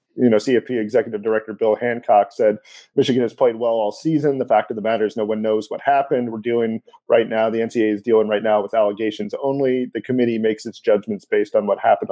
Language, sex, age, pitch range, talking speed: English, male, 40-59, 115-140 Hz, 235 wpm